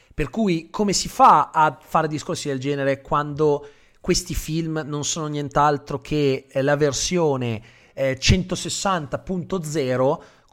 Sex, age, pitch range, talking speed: male, 30-49, 130-175 Hz, 120 wpm